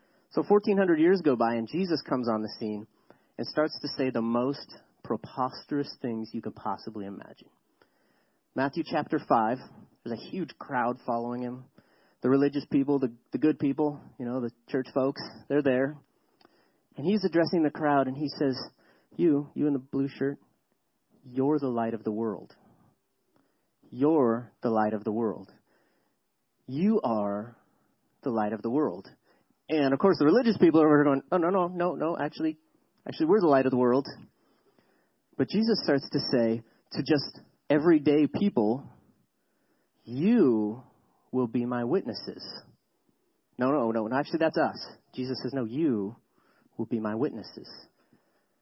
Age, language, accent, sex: 30-49, English, American, male